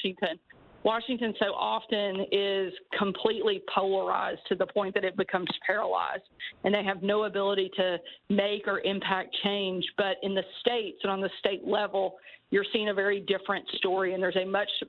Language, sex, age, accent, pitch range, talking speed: English, female, 40-59, American, 190-205 Hz, 175 wpm